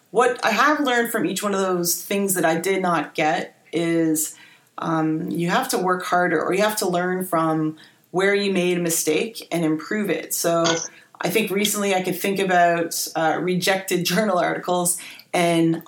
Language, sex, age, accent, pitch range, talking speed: English, female, 30-49, American, 165-190 Hz, 185 wpm